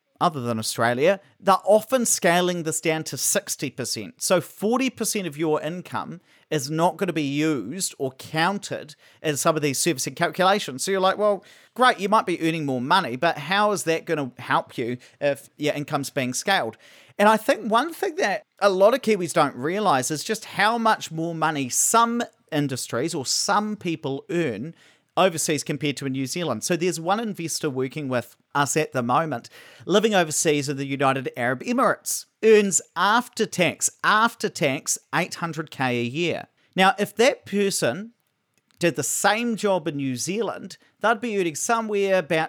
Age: 40-59